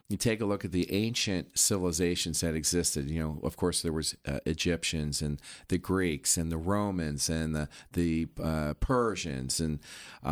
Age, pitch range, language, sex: 40-59, 85-110 Hz, English, male